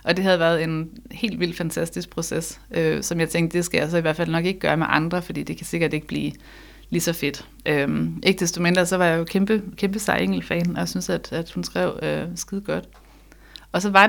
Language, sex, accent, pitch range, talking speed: Danish, female, native, 165-190 Hz, 245 wpm